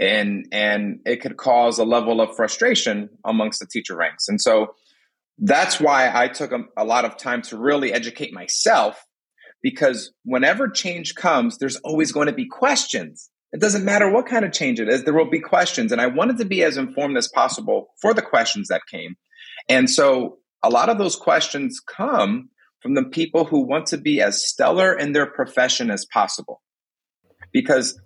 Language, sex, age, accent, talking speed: English, male, 30-49, American, 190 wpm